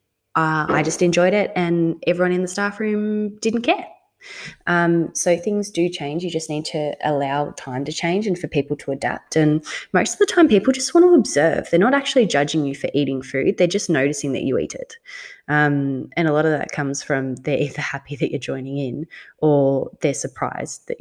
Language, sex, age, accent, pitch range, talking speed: English, female, 20-39, Australian, 145-190 Hz, 215 wpm